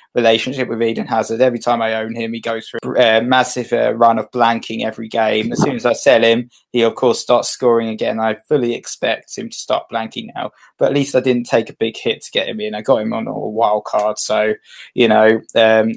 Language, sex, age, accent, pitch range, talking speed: English, male, 20-39, British, 115-145 Hz, 235 wpm